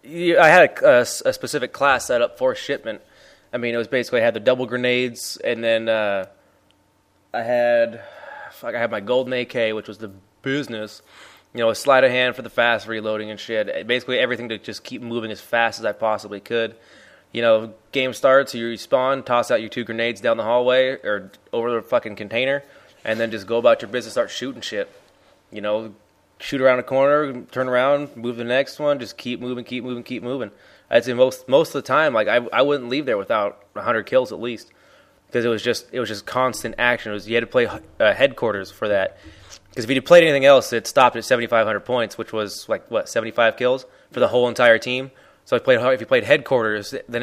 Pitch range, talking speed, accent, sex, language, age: 110-135 Hz, 230 wpm, American, male, English, 20-39